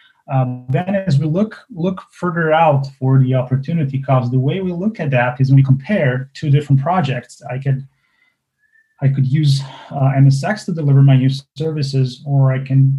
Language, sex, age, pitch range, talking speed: English, male, 30-49, 130-150 Hz, 185 wpm